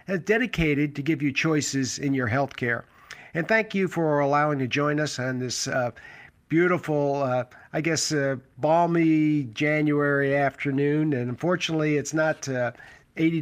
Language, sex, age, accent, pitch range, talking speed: English, male, 50-69, American, 135-160 Hz, 155 wpm